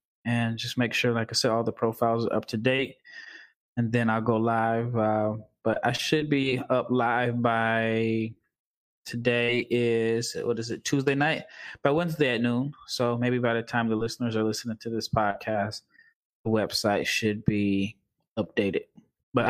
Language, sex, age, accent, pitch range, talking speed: English, male, 20-39, American, 110-130 Hz, 170 wpm